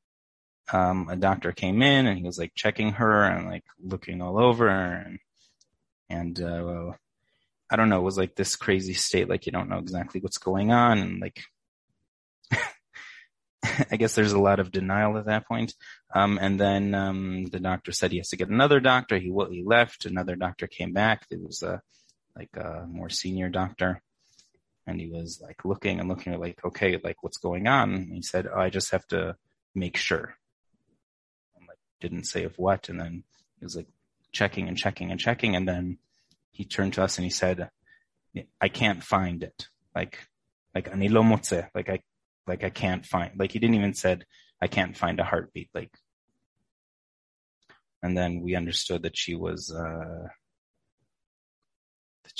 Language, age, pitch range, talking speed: English, 20-39, 85-100 Hz, 180 wpm